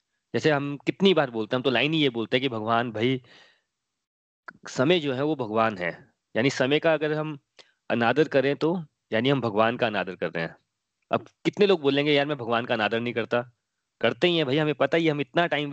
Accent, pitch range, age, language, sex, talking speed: native, 125-165 Hz, 30-49, Hindi, male, 225 wpm